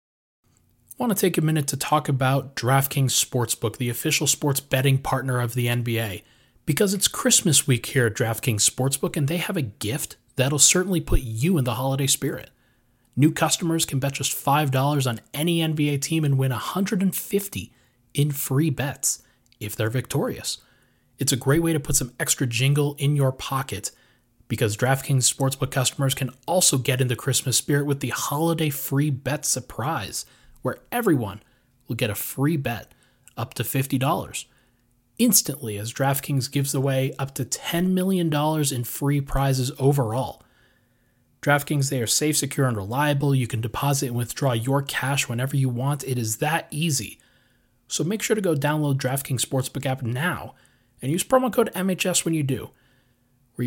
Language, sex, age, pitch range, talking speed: English, male, 30-49, 125-150 Hz, 170 wpm